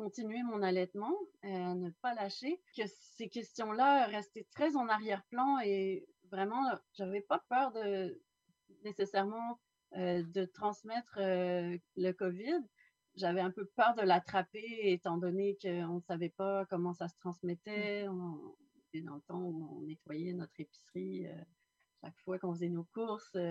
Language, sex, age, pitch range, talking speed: French, female, 40-59, 175-210 Hz, 155 wpm